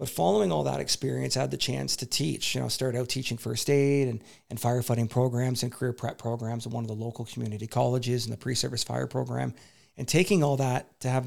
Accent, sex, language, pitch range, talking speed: American, male, English, 115-130 Hz, 235 wpm